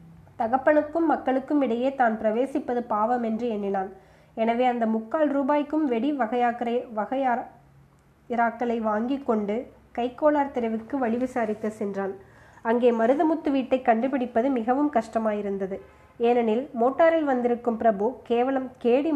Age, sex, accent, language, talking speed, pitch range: 20-39, female, native, Tamil, 100 wpm, 220-265 Hz